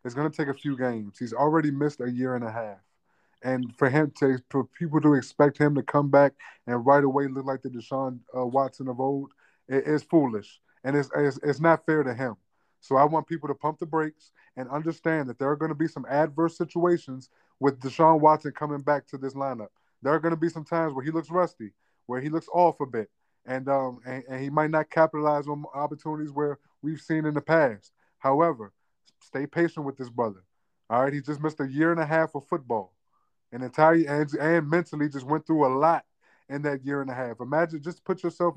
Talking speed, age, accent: 225 wpm, 20-39, American